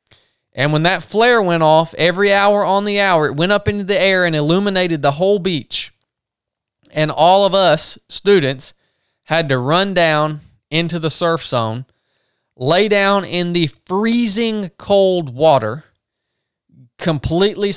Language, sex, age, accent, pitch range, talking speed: English, male, 20-39, American, 125-180 Hz, 145 wpm